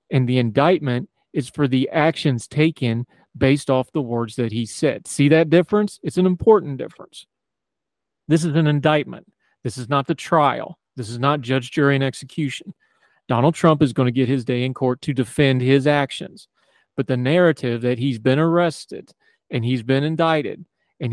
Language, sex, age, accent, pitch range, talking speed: English, male, 40-59, American, 125-155 Hz, 180 wpm